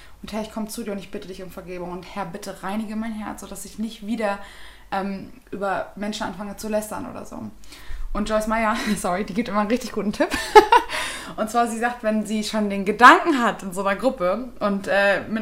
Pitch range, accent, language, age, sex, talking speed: 205-245 Hz, German, German, 20-39, female, 225 wpm